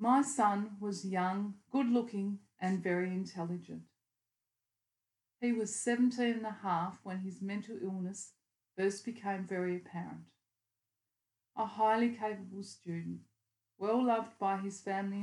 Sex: female